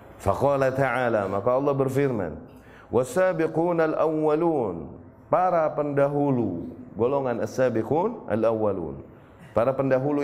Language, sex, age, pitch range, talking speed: Indonesian, male, 30-49, 120-160 Hz, 75 wpm